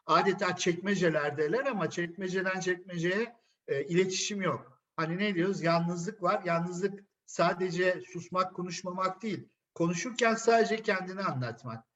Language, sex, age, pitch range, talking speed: Turkish, male, 50-69, 145-205 Hz, 110 wpm